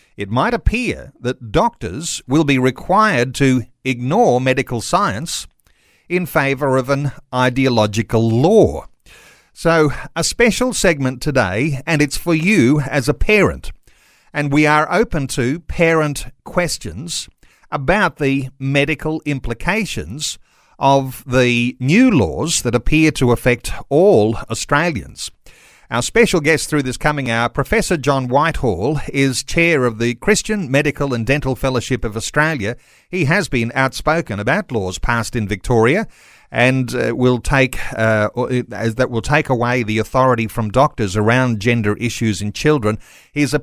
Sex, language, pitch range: male, English, 120-155 Hz